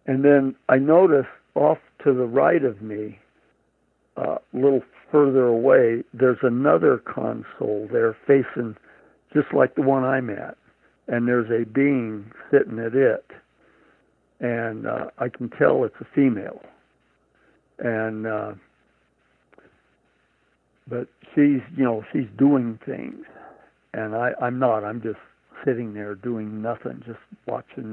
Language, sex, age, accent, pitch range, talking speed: English, male, 60-79, American, 110-130 Hz, 135 wpm